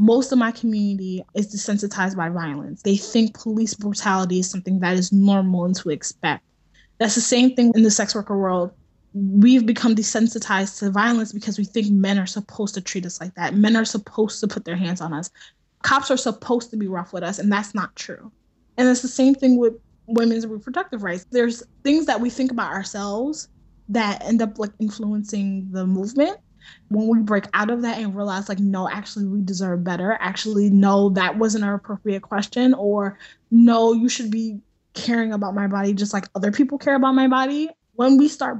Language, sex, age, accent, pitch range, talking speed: English, female, 20-39, American, 195-230 Hz, 200 wpm